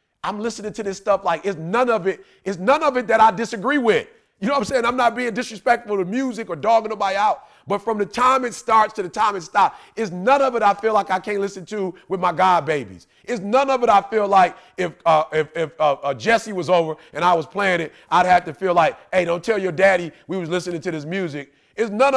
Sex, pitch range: male, 180-230 Hz